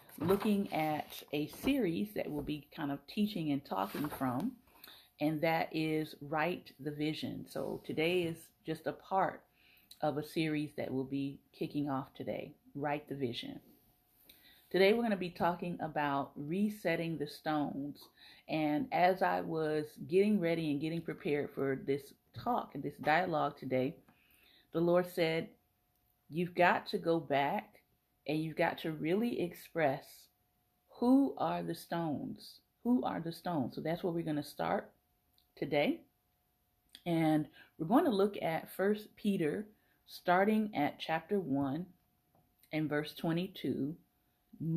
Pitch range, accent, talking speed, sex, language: 145-180 Hz, American, 145 wpm, female, English